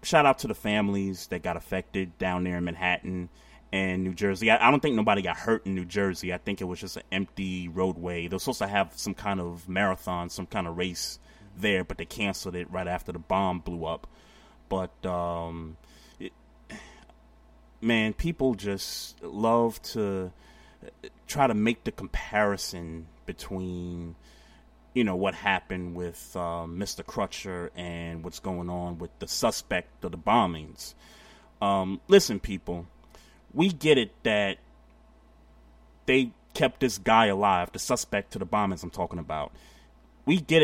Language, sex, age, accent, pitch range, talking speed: English, male, 30-49, American, 85-100 Hz, 160 wpm